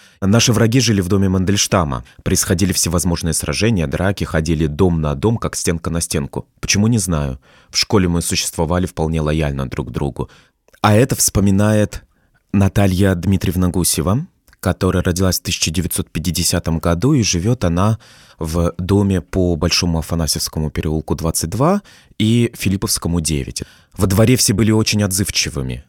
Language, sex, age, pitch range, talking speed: Russian, male, 20-39, 80-105 Hz, 140 wpm